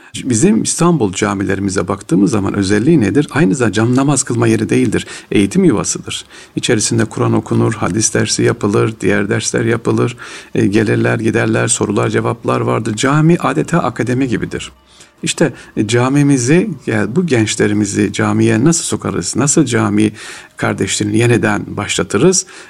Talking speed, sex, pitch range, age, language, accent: 120 wpm, male, 105-125 Hz, 50-69, Turkish, native